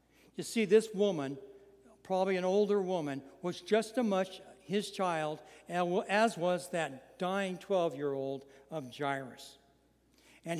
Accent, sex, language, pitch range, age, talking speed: American, male, English, 155-205 Hz, 60-79, 125 wpm